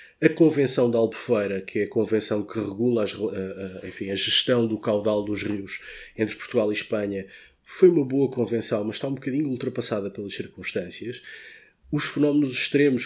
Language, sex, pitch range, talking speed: Portuguese, male, 110-130 Hz, 180 wpm